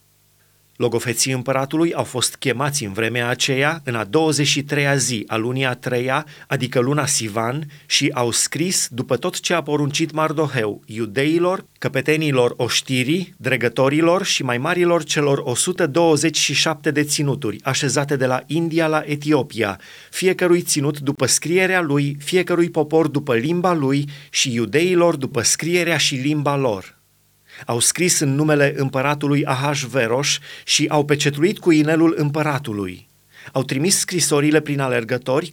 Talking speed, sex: 135 wpm, male